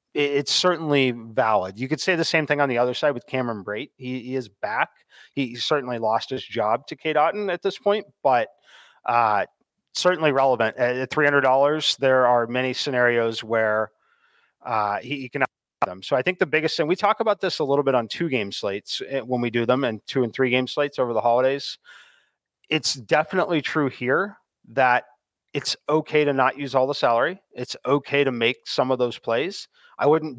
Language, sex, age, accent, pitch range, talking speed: English, male, 30-49, American, 125-155 Hz, 195 wpm